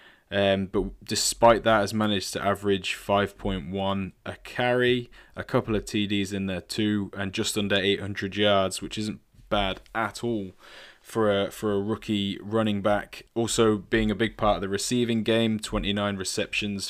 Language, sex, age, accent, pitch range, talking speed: English, male, 20-39, British, 100-110 Hz, 165 wpm